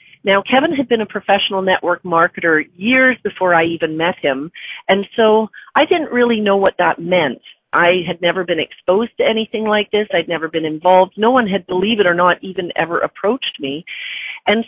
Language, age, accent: English, 40-59, American